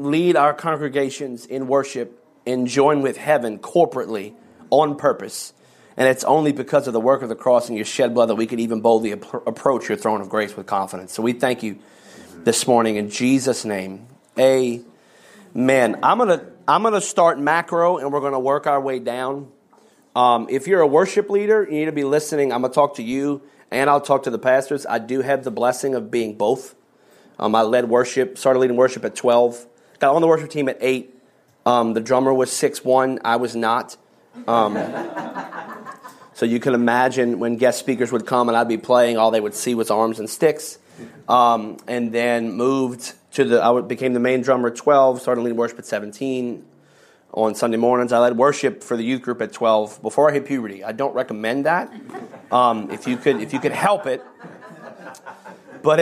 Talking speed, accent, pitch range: 205 wpm, American, 115-140 Hz